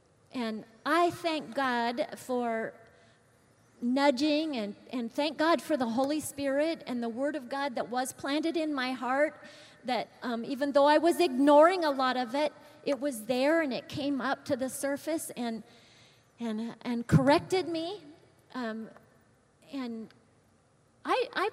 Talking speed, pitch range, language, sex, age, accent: 155 wpm, 225-300 Hz, English, female, 40-59, American